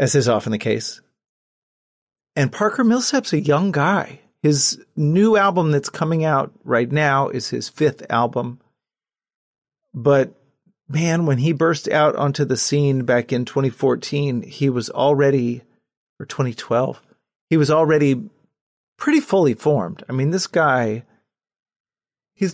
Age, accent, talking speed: 30-49, American, 135 wpm